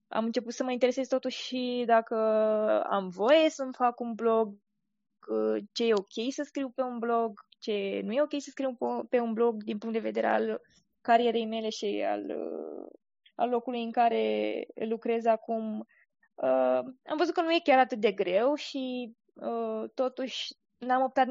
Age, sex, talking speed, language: 20-39, female, 165 wpm, Romanian